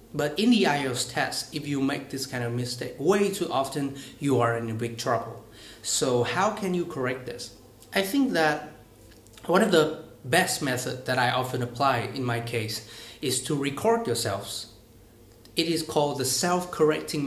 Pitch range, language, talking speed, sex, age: 115-150 Hz, Vietnamese, 175 wpm, male, 30-49